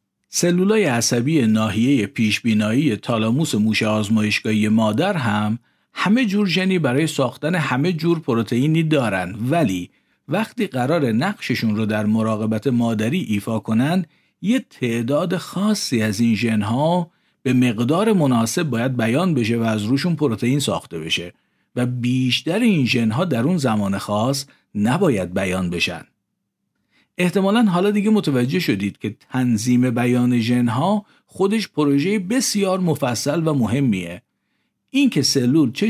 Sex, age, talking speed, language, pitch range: male, 50-69, 125 wpm, Persian, 110-170 Hz